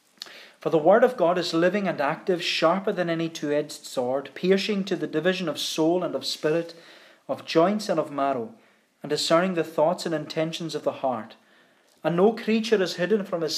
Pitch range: 150-185 Hz